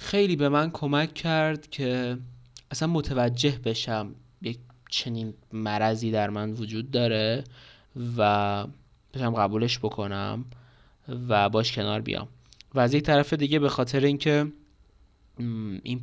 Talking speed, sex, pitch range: 125 wpm, male, 110-135 Hz